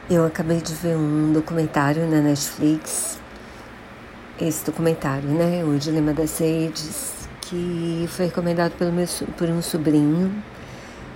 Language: Portuguese